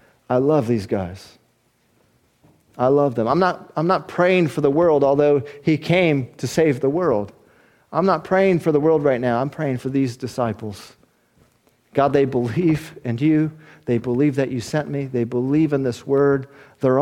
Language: English